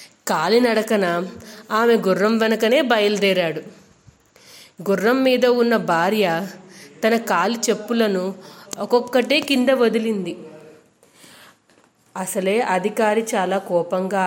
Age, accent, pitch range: 30-49, native, 185-225 Hz